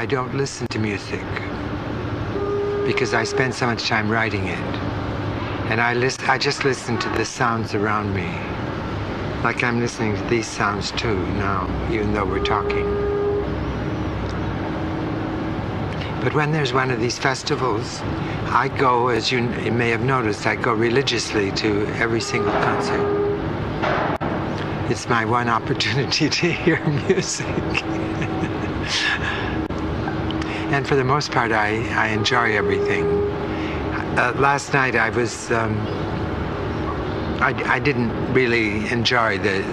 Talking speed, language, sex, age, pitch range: 125 wpm, English, male, 60-79, 100-130 Hz